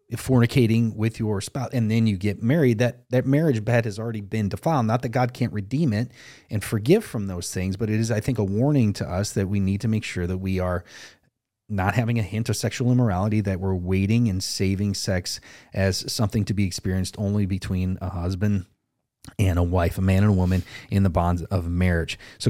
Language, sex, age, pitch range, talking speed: English, male, 30-49, 95-120 Hz, 220 wpm